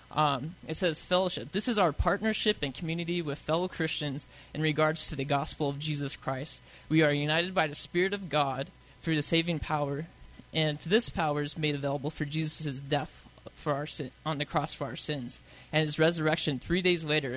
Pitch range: 140-165 Hz